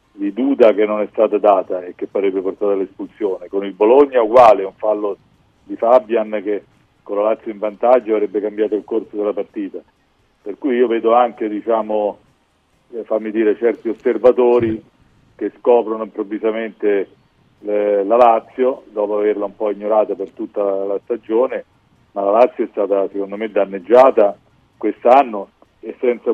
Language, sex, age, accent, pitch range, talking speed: Italian, male, 40-59, native, 100-120 Hz, 155 wpm